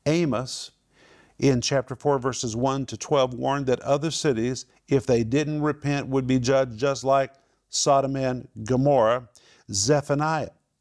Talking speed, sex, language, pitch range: 140 wpm, male, English, 125-150 Hz